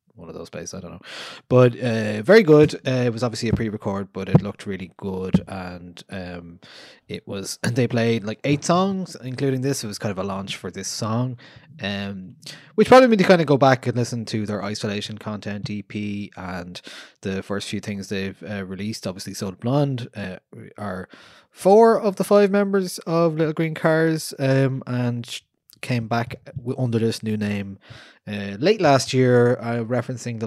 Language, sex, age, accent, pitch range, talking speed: English, male, 20-39, Irish, 100-135 Hz, 190 wpm